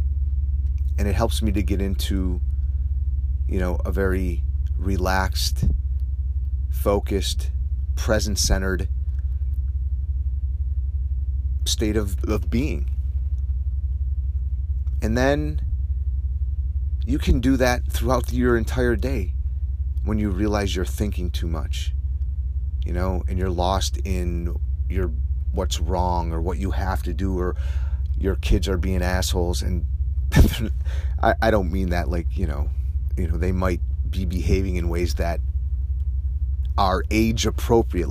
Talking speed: 120 wpm